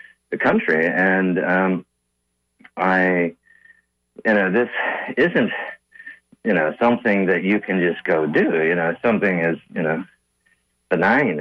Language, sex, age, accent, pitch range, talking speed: English, male, 40-59, American, 75-95 Hz, 130 wpm